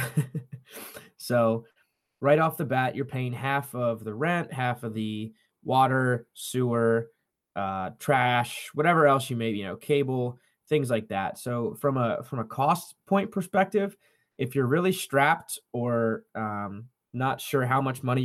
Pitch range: 120-150 Hz